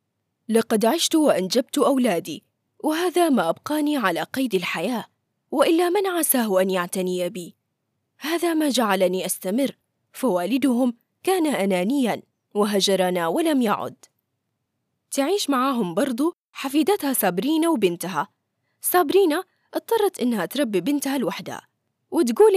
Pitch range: 195-315 Hz